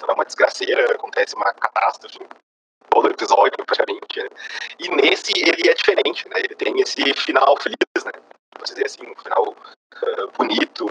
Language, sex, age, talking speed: Portuguese, male, 30-49, 150 wpm